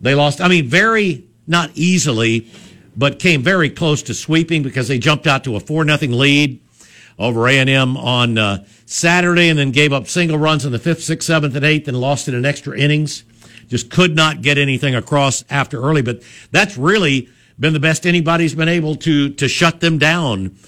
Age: 60-79